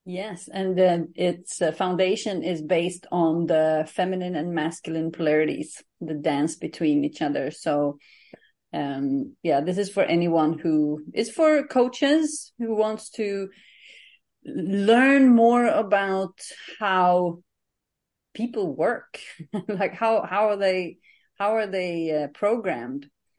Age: 30-49